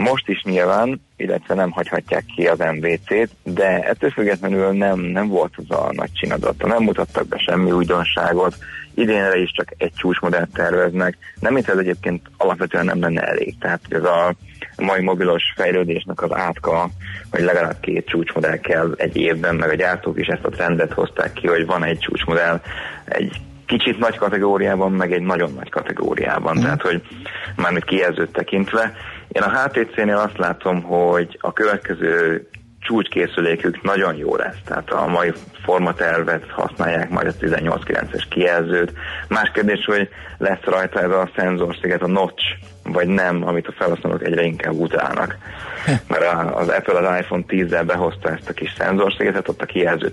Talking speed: 160 wpm